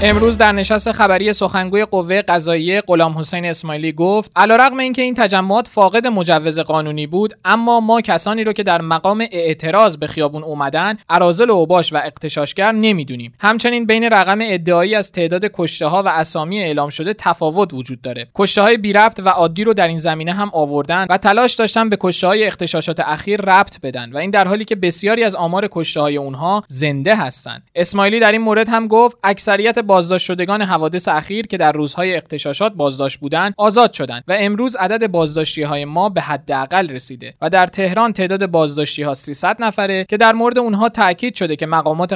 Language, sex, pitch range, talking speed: Persian, male, 160-215 Hz, 175 wpm